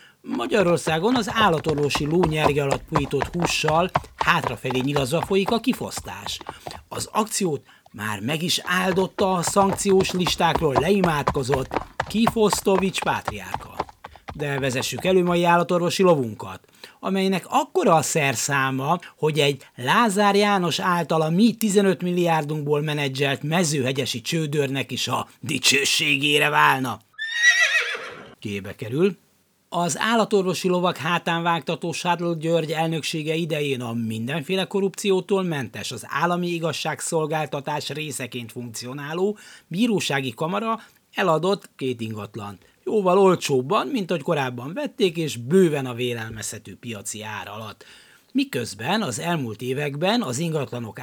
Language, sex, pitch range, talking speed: Hungarian, male, 140-195 Hz, 110 wpm